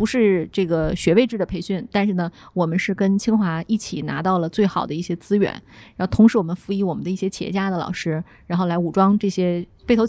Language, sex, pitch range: Chinese, female, 180-220 Hz